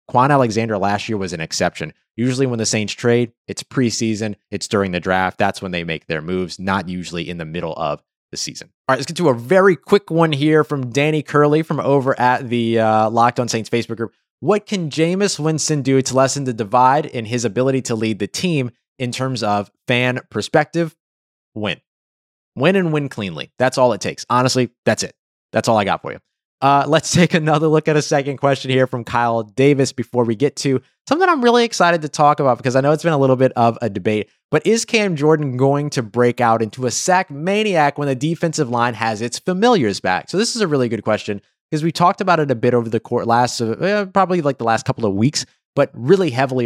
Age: 30-49